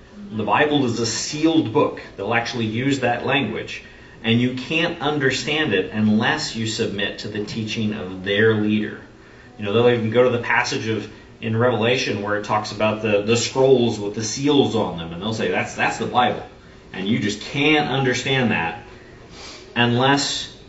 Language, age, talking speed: English, 40-59, 180 wpm